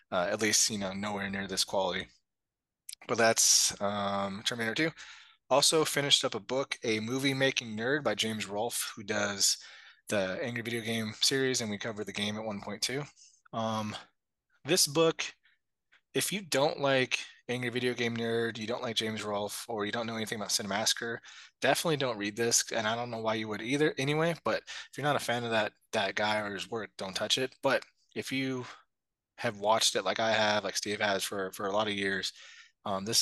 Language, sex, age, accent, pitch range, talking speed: English, male, 20-39, American, 105-125 Hz, 200 wpm